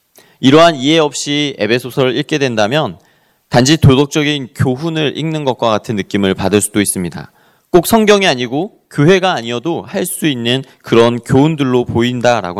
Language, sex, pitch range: Korean, male, 110-155 Hz